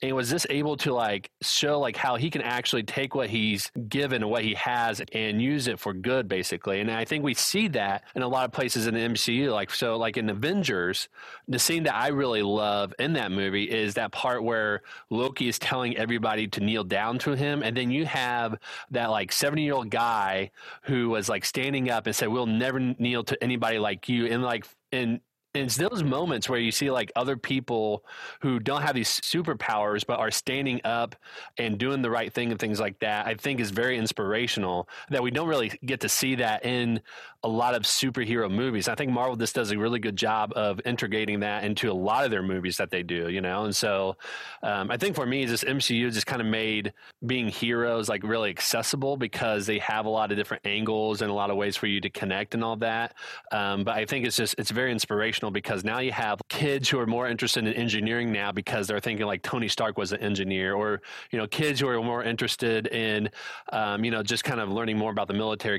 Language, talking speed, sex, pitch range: English, 225 wpm, male, 105-130 Hz